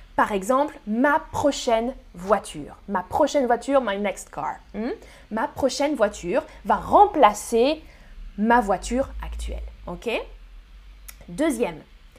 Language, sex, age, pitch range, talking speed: French, female, 20-39, 220-310 Hz, 105 wpm